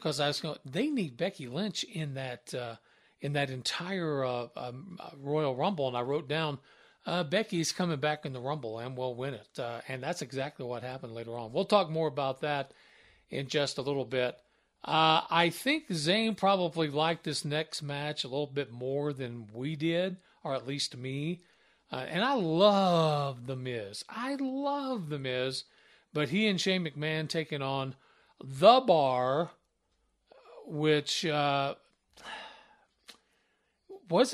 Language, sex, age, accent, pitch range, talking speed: English, male, 50-69, American, 140-190 Hz, 165 wpm